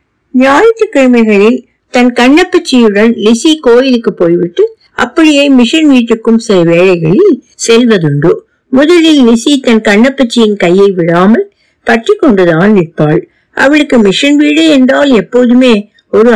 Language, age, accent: Tamil, 60-79, native